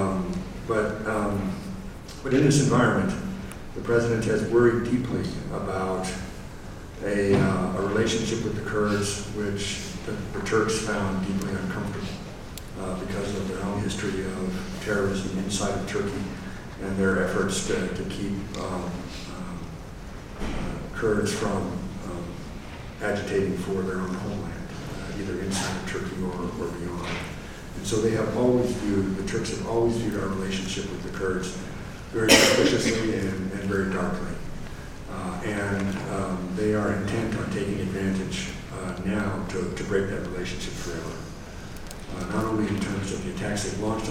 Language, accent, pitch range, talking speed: English, American, 95-110 Hz, 145 wpm